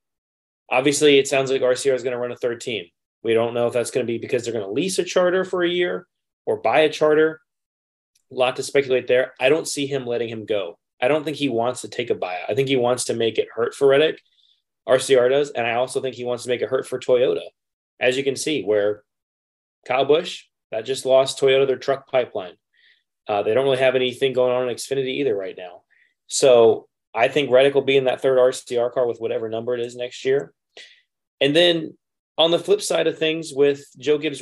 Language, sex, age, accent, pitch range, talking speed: English, male, 20-39, American, 120-155 Hz, 235 wpm